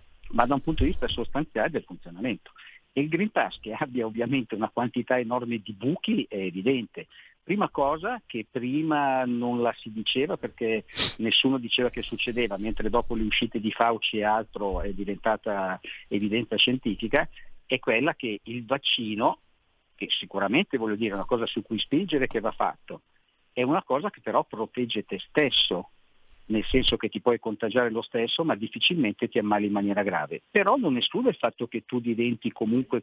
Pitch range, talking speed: 110-130 Hz, 175 wpm